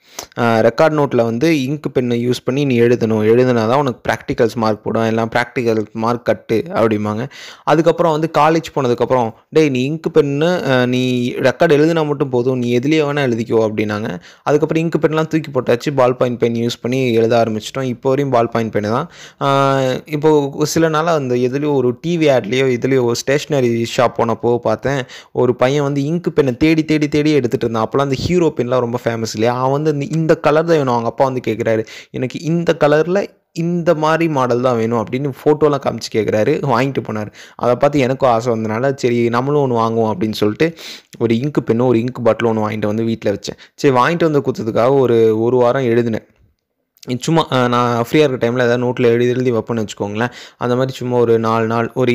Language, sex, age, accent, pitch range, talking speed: Tamil, male, 20-39, native, 115-145 Hz, 175 wpm